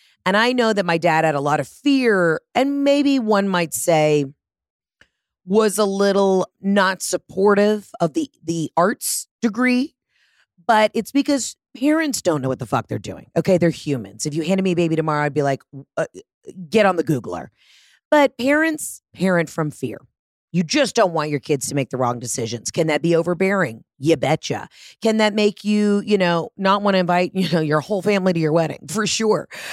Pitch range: 145-205 Hz